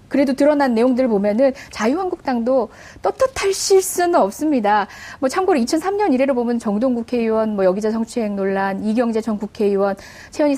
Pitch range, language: 210-310 Hz, Korean